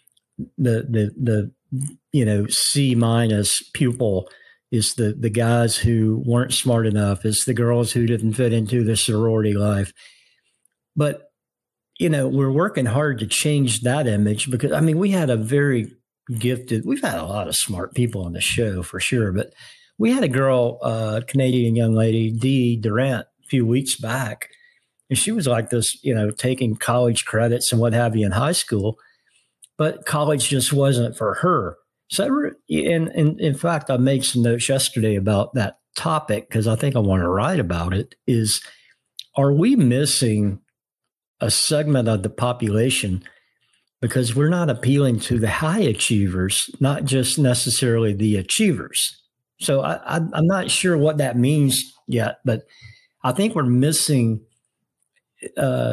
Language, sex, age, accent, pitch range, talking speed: English, male, 50-69, American, 110-140 Hz, 165 wpm